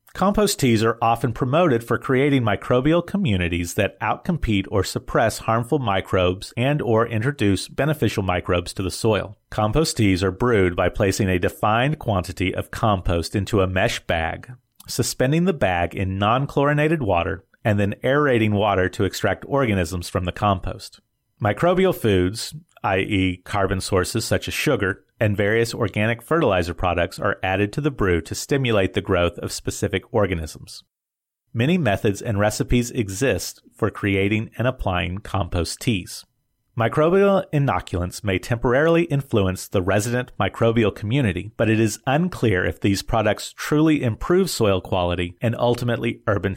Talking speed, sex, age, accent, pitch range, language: 145 wpm, male, 30-49, American, 95-125 Hz, English